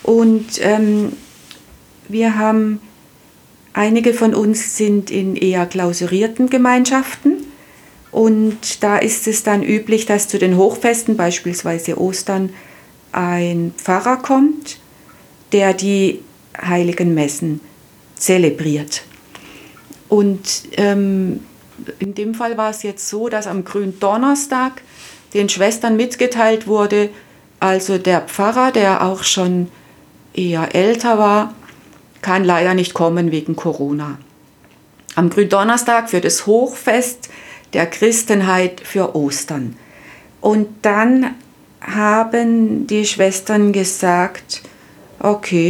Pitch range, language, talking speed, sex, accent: 180-225 Hz, German, 105 wpm, female, German